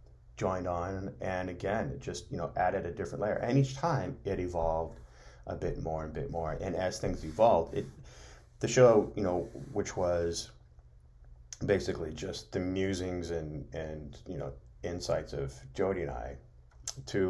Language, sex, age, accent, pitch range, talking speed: English, male, 30-49, American, 75-95 Hz, 165 wpm